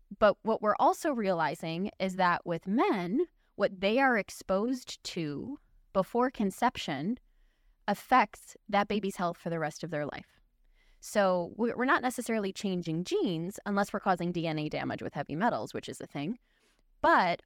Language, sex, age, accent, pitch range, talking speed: English, female, 20-39, American, 175-210 Hz, 155 wpm